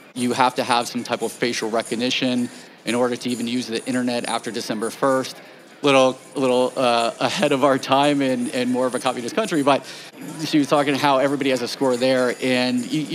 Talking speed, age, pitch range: 205 wpm, 30-49, 125-140 Hz